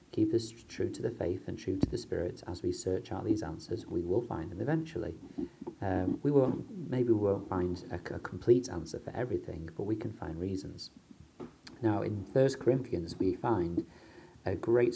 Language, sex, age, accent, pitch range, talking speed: English, male, 40-59, British, 90-120 Hz, 195 wpm